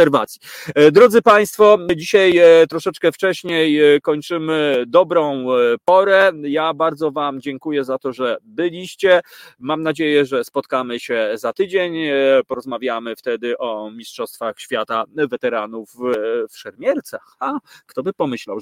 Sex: male